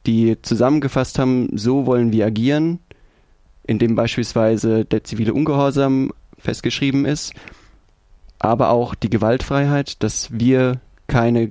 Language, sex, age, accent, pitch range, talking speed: German, male, 20-39, German, 110-135 Hz, 110 wpm